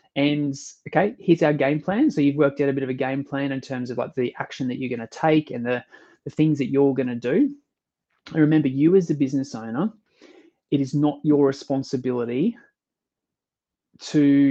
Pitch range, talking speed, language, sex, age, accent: 125-150 Hz, 205 wpm, English, male, 20-39, Australian